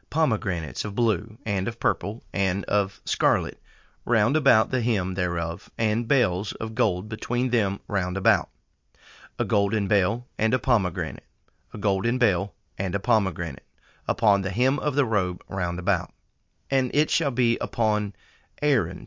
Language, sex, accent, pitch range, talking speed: English, male, American, 100-125 Hz, 150 wpm